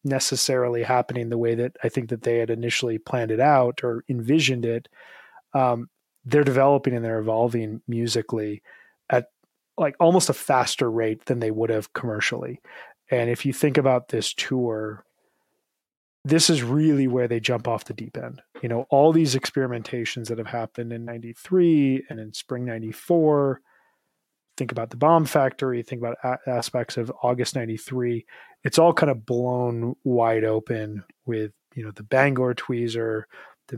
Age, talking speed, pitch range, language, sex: 30-49, 160 wpm, 115-135 Hz, English, male